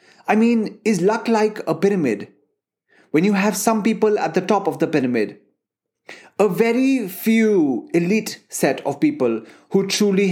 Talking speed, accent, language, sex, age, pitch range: 155 wpm, Indian, English, male, 30-49, 155-200 Hz